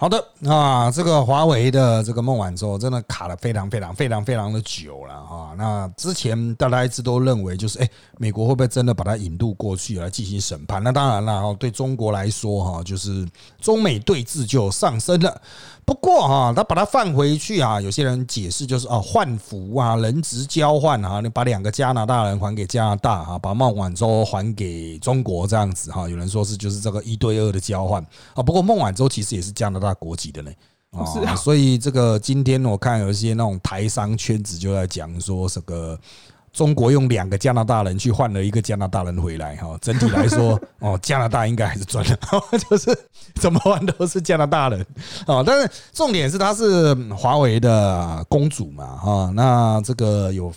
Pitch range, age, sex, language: 100-130 Hz, 30-49, male, Chinese